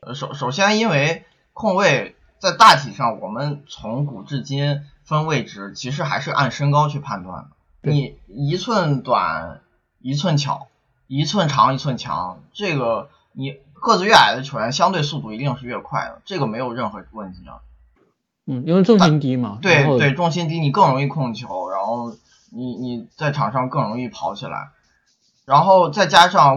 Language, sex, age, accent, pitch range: Chinese, male, 20-39, native, 125-170 Hz